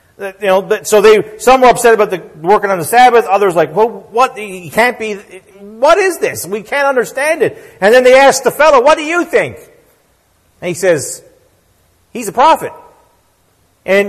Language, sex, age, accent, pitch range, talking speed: English, male, 40-59, American, 185-260 Hz, 190 wpm